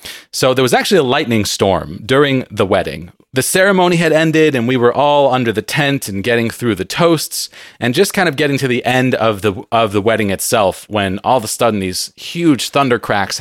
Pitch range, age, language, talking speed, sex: 110-155 Hz, 30-49, English, 220 wpm, male